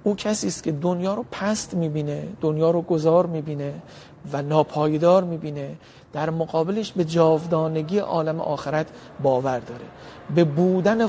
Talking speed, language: 135 wpm, Persian